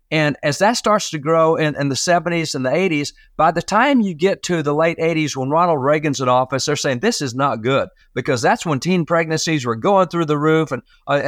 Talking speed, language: 240 wpm, English